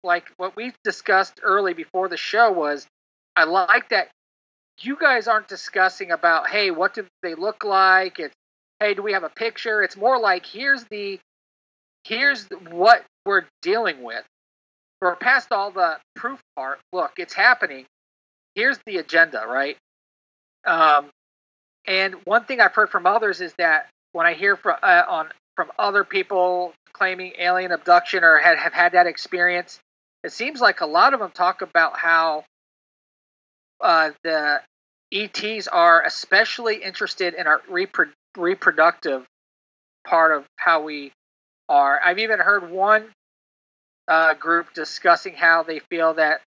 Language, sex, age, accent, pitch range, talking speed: English, male, 40-59, American, 155-200 Hz, 150 wpm